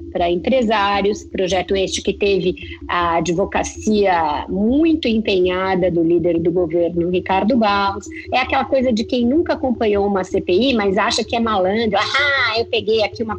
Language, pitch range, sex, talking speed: Portuguese, 190-260 Hz, female, 155 wpm